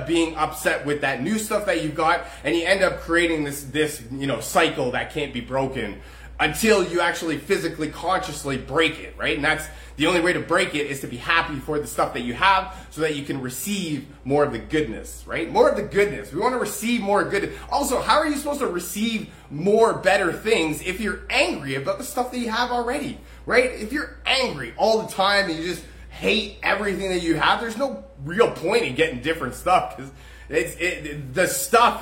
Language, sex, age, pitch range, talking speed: English, male, 30-49, 140-180 Hz, 220 wpm